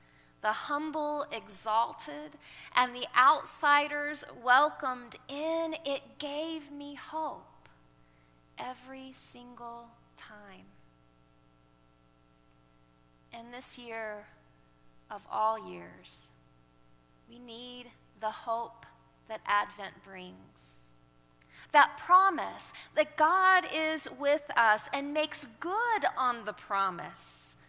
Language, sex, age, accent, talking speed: English, female, 30-49, American, 90 wpm